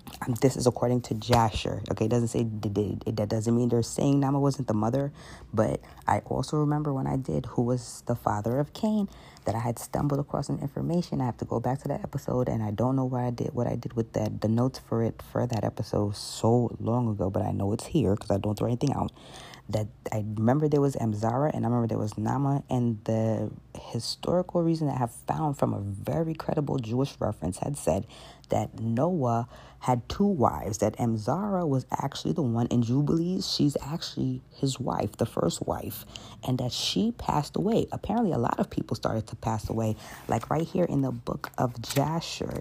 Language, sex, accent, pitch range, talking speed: English, female, American, 110-140 Hz, 215 wpm